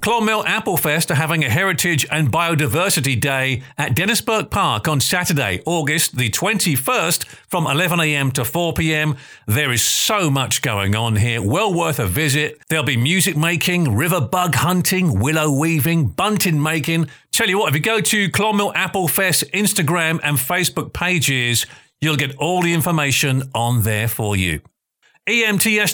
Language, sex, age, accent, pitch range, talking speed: English, male, 40-59, British, 135-185 Hz, 155 wpm